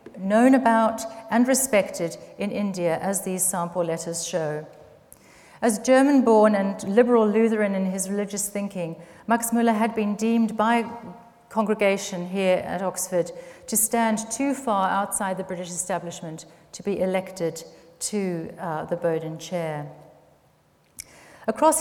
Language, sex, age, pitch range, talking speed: English, female, 40-59, 180-220 Hz, 130 wpm